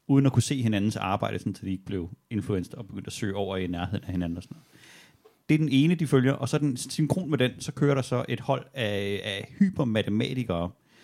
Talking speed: 215 wpm